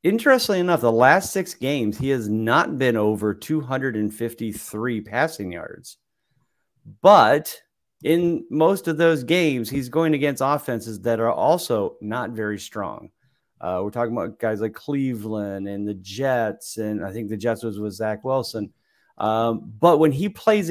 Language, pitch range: English, 105-145 Hz